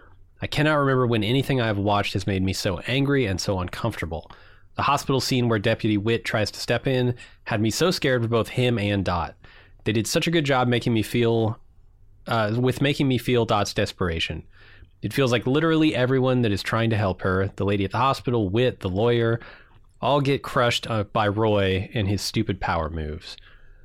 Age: 30-49